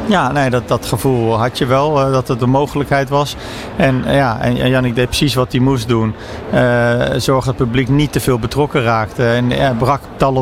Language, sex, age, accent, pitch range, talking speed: Dutch, male, 50-69, Dutch, 120-135 Hz, 220 wpm